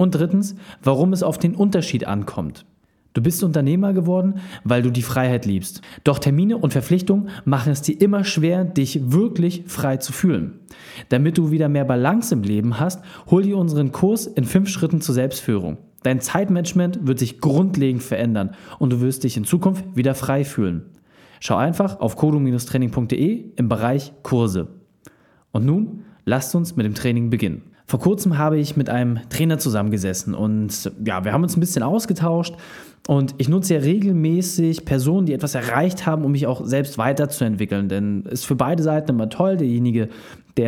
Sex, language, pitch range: male, German, 125-175 Hz